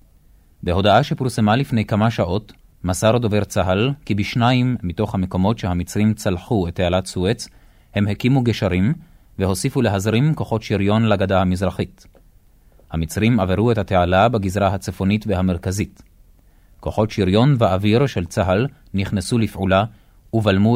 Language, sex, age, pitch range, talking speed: Hebrew, male, 30-49, 95-110 Hz, 120 wpm